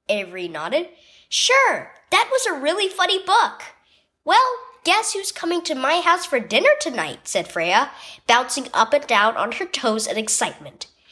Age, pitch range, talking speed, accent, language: 10-29, 275-375 Hz, 160 wpm, American, English